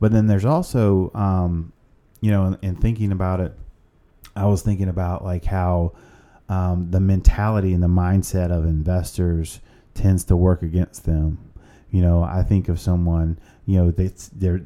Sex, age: male, 30-49